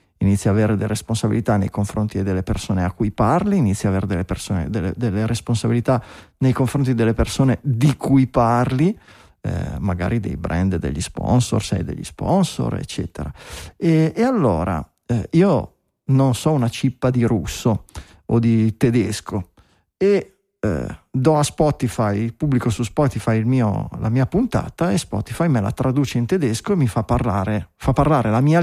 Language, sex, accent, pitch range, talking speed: Italian, male, native, 105-140 Hz, 165 wpm